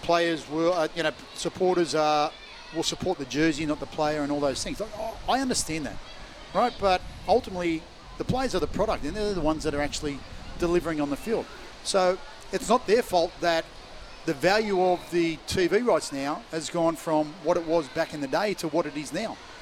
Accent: Australian